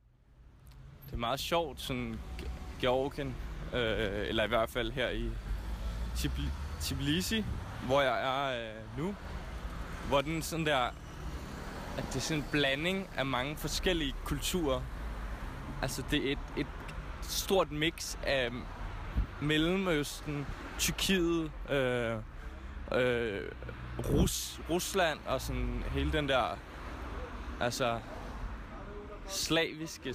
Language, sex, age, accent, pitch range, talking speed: Danish, male, 20-39, native, 80-130 Hz, 105 wpm